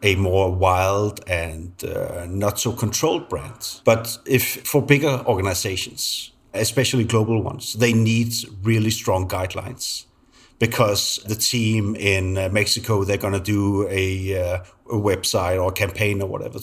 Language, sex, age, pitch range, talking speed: English, male, 30-49, 100-120 Hz, 140 wpm